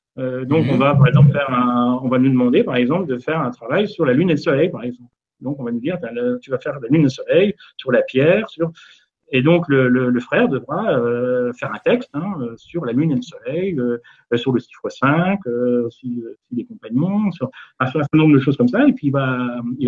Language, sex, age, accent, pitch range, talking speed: French, male, 40-59, French, 125-175 Hz, 265 wpm